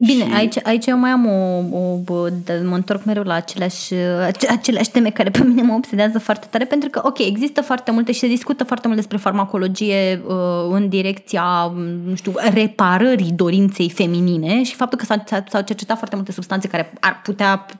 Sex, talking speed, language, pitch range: female, 180 wpm, Romanian, 190-250 Hz